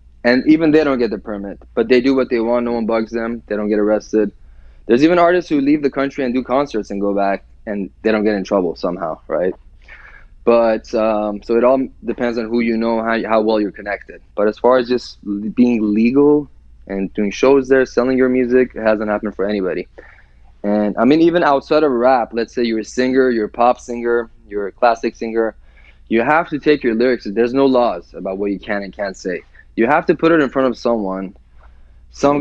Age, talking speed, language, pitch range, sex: 20-39, 225 wpm, English, 100-125 Hz, male